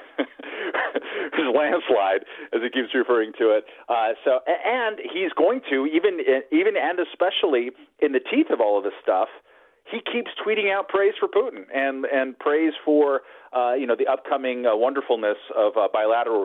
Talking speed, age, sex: 170 wpm, 40-59, male